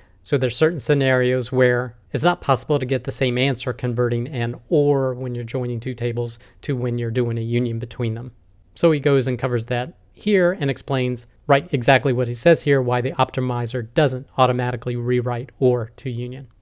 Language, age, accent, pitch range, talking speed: English, 40-59, American, 125-145 Hz, 190 wpm